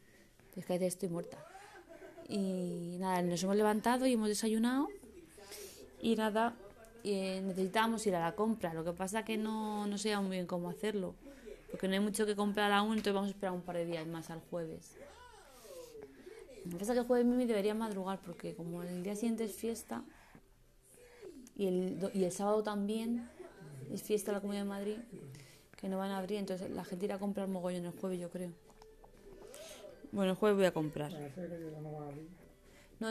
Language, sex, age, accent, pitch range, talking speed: Spanish, female, 20-39, Spanish, 185-230 Hz, 185 wpm